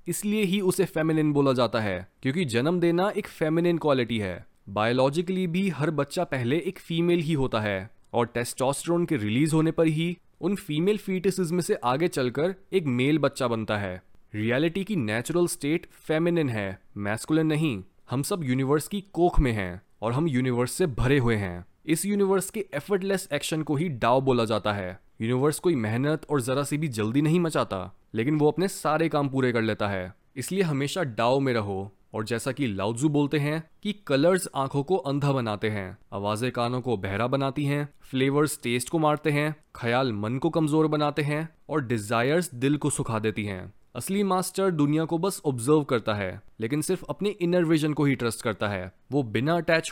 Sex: male